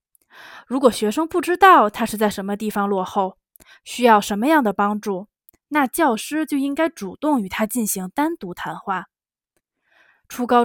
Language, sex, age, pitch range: Chinese, female, 20-39, 205-285 Hz